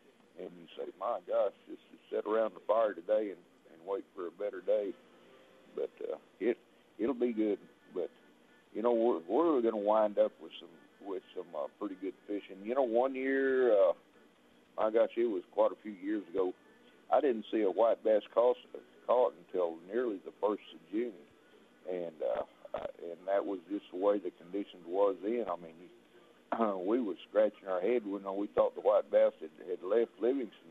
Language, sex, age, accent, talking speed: English, male, 60-79, American, 195 wpm